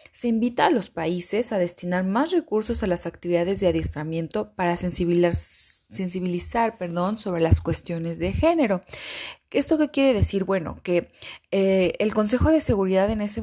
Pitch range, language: 175-220 Hz, Spanish